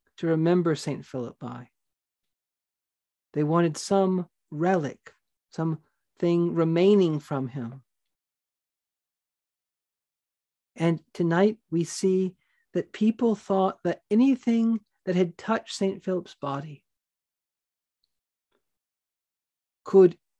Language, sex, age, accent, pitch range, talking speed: English, male, 40-59, American, 140-190 Hz, 85 wpm